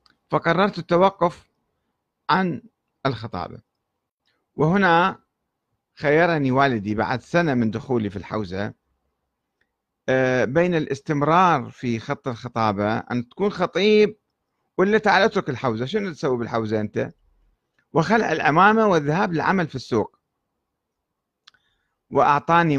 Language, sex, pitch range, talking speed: Arabic, male, 115-170 Hz, 95 wpm